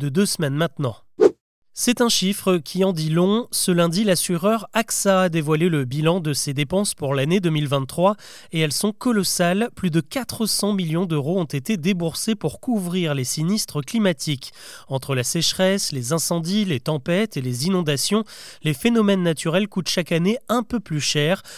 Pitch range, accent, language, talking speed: 150-200 Hz, French, French, 170 wpm